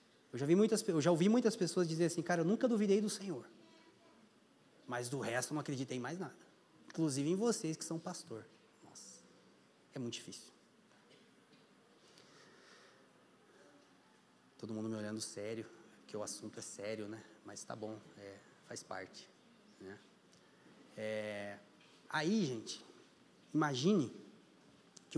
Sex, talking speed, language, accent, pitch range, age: male, 130 wpm, Portuguese, Brazilian, 135-180 Hz, 20-39